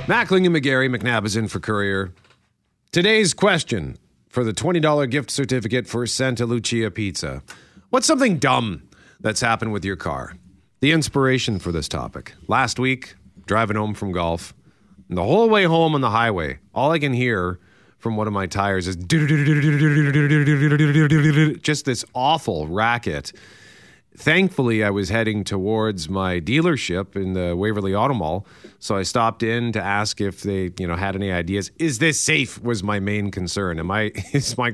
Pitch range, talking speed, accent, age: 95-130 Hz, 165 wpm, American, 40-59